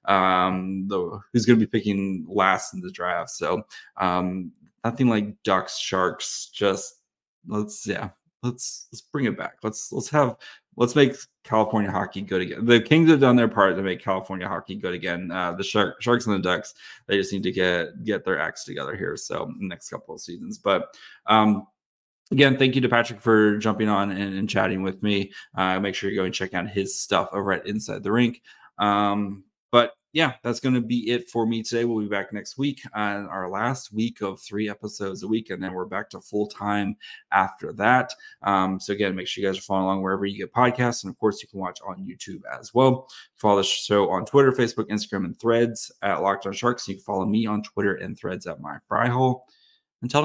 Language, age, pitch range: English, 20-39, 95-120 Hz